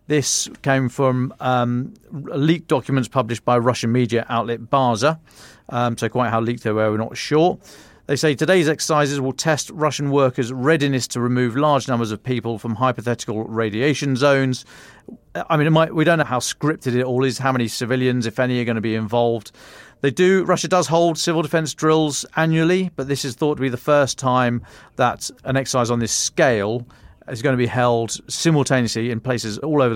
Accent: British